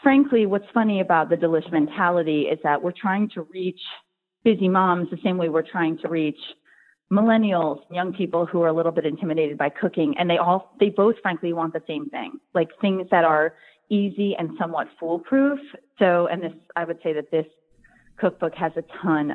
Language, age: English, 30-49